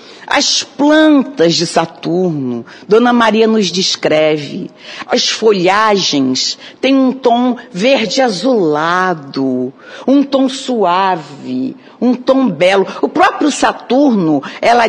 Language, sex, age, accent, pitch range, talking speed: Portuguese, female, 50-69, Brazilian, 185-265 Hz, 100 wpm